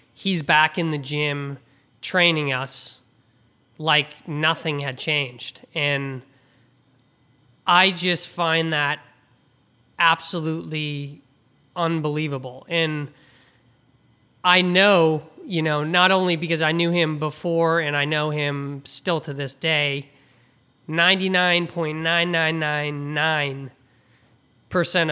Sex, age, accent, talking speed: male, 20-39, American, 95 wpm